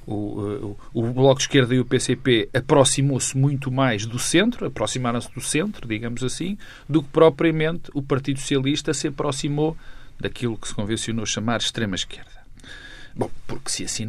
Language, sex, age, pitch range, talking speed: Portuguese, male, 40-59, 120-150 Hz, 165 wpm